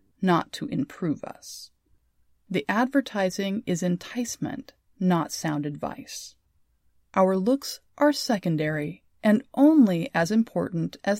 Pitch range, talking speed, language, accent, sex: 155-235 Hz, 105 wpm, English, American, female